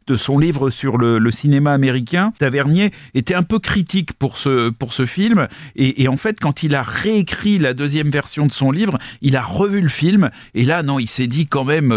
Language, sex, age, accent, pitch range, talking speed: French, male, 40-59, French, 130-165 Hz, 225 wpm